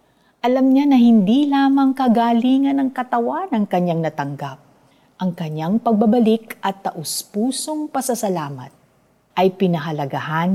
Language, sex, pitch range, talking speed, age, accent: Filipino, female, 165-225 Hz, 110 wpm, 50-69, native